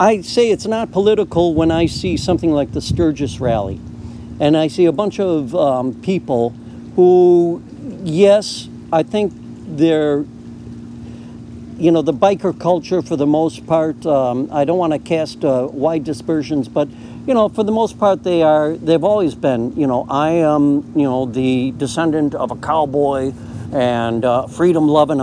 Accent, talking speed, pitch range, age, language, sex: American, 165 wpm, 135-195 Hz, 60-79, English, male